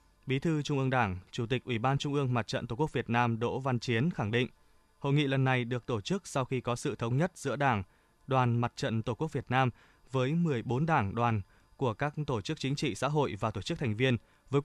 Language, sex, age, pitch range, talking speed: Vietnamese, male, 20-39, 115-145 Hz, 255 wpm